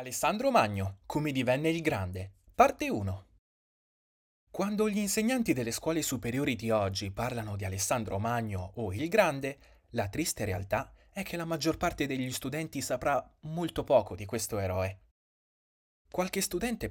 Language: Italian